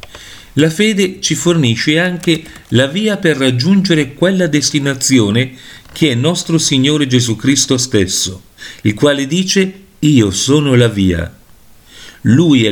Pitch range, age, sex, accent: 110-160 Hz, 50-69, male, native